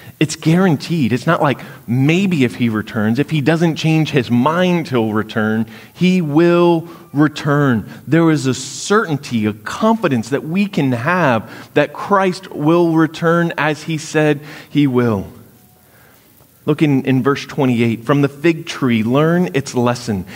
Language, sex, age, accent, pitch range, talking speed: English, male, 30-49, American, 115-160 Hz, 150 wpm